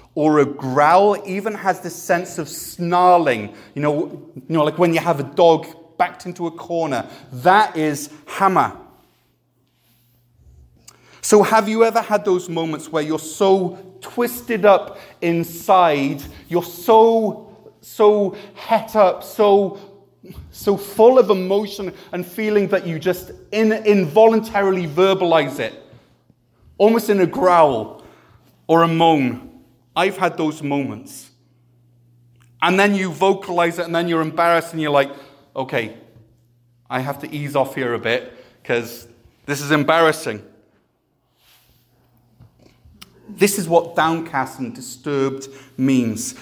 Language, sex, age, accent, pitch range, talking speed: English, male, 30-49, British, 135-185 Hz, 130 wpm